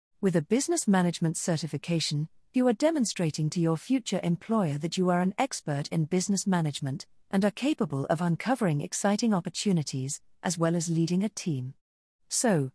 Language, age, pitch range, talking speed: English, 40-59, 160-205 Hz, 160 wpm